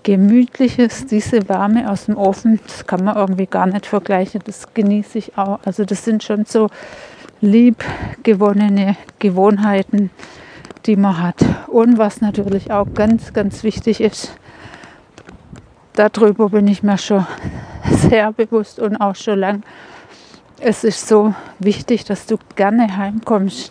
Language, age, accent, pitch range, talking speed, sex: German, 60-79, German, 195-225 Hz, 135 wpm, female